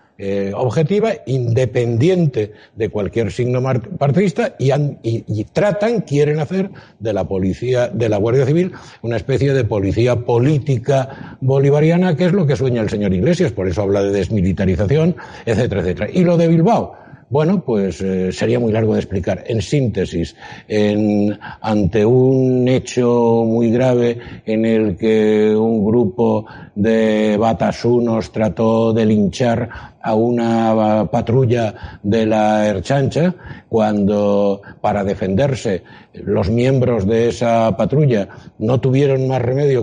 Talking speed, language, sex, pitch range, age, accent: 135 wpm, Spanish, male, 105-130 Hz, 60-79, Spanish